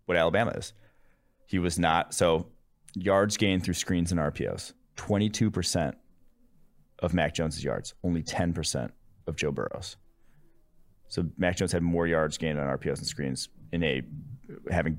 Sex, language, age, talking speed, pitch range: male, English, 30-49, 155 wpm, 80-100 Hz